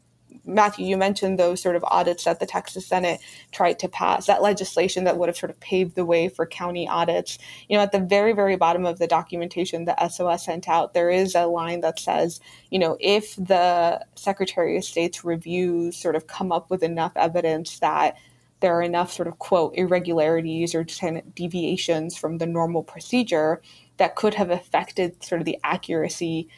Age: 20-39